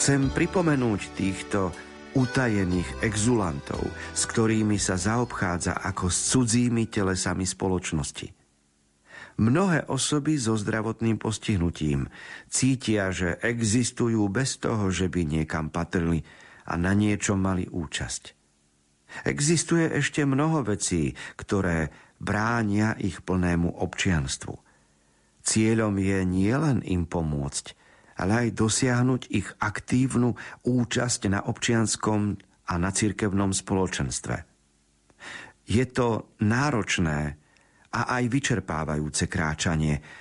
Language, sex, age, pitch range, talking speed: Slovak, male, 50-69, 85-120 Hz, 100 wpm